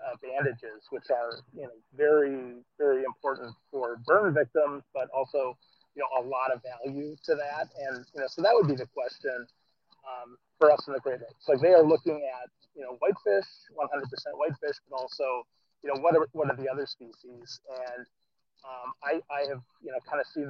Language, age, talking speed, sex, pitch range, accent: English, 30-49, 200 wpm, male, 125-160 Hz, American